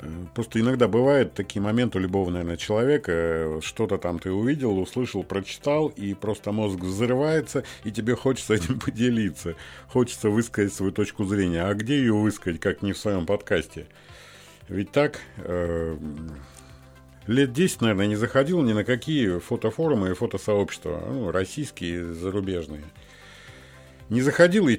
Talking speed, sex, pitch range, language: 135 wpm, male, 95-130 Hz, Russian